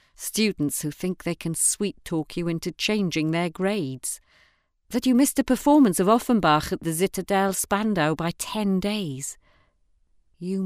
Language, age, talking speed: English, 40-59, 145 wpm